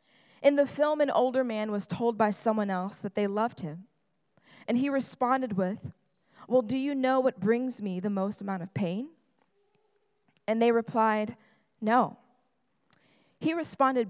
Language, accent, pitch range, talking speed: English, American, 205-255 Hz, 160 wpm